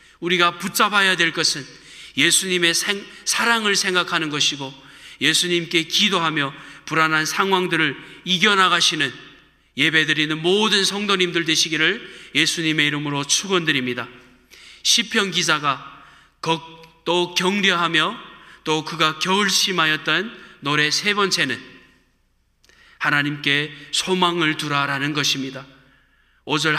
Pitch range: 150-180 Hz